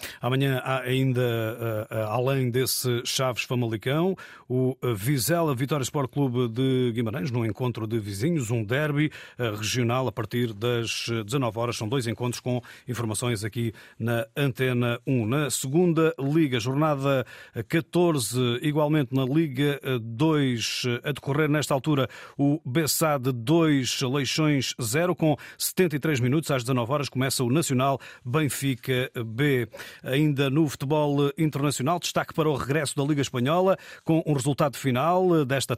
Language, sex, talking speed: Portuguese, male, 135 wpm